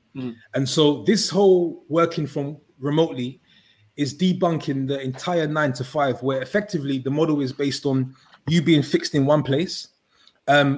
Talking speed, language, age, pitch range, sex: 155 wpm, English, 20-39, 140-170 Hz, male